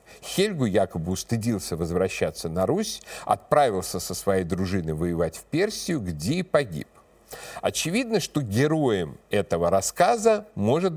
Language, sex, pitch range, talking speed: Russian, male, 105-165 Hz, 120 wpm